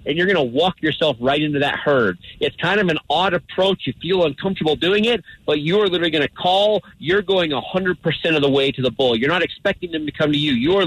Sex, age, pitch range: male, 40-59, 145-185 Hz